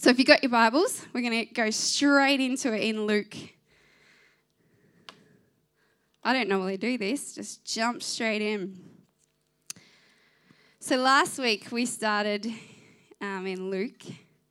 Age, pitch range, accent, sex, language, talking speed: 20-39, 205-260 Hz, Australian, female, English, 130 wpm